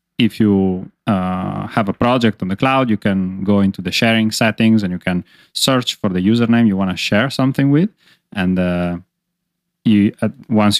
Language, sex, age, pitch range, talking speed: English, male, 30-49, 95-105 Hz, 190 wpm